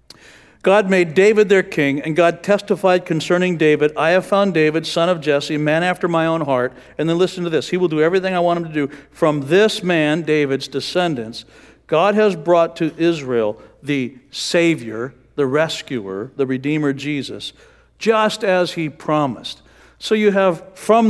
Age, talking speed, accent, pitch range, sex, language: 60-79, 175 wpm, American, 135-185 Hz, male, English